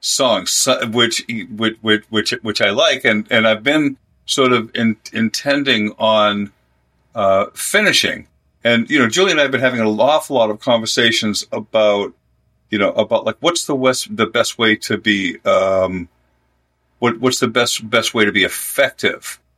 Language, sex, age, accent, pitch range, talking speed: English, male, 50-69, American, 105-125 Hz, 165 wpm